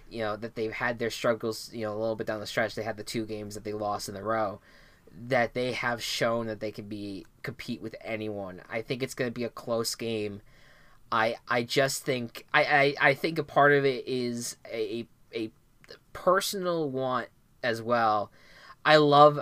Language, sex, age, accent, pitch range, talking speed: English, male, 20-39, American, 110-130 Hz, 205 wpm